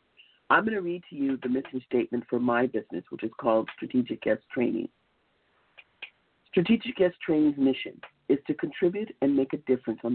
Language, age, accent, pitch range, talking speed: English, 50-69, American, 120-160 Hz, 175 wpm